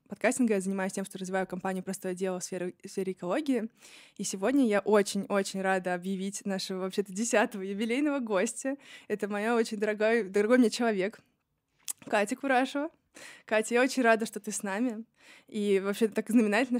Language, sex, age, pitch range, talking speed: Russian, female, 20-39, 200-230 Hz, 160 wpm